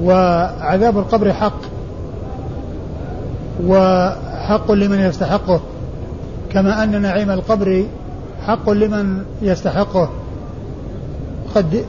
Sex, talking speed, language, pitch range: male, 70 wpm, Arabic, 185-210 Hz